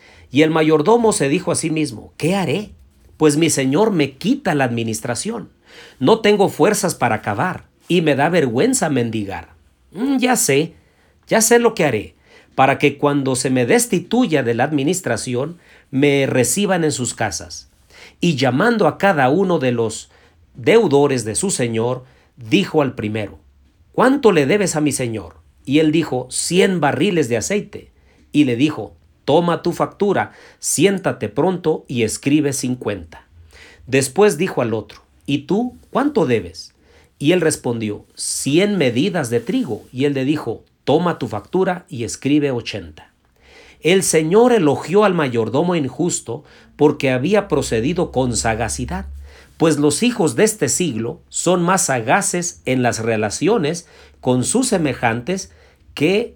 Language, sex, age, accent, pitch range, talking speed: Spanish, male, 50-69, Mexican, 115-175 Hz, 145 wpm